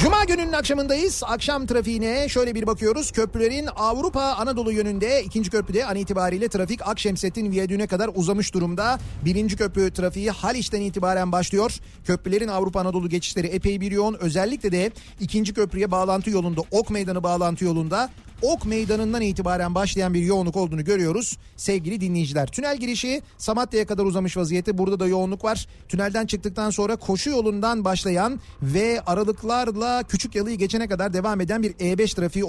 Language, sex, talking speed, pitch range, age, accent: Turkish, male, 150 wpm, 185-230 Hz, 40-59, native